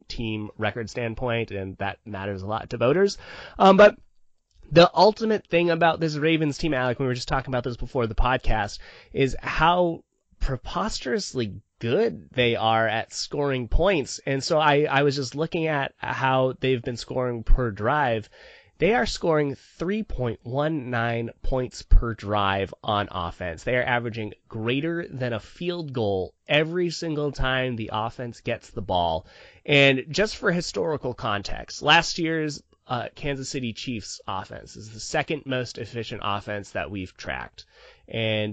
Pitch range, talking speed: 110-145 Hz, 155 wpm